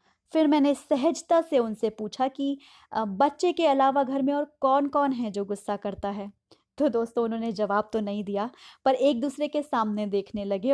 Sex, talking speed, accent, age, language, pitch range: female, 190 wpm, native, 20-39, Hindi, 220-280 Hz